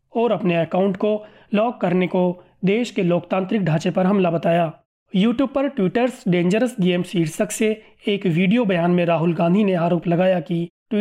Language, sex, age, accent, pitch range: Hindi, male, 30-49, native, 175-215 Hz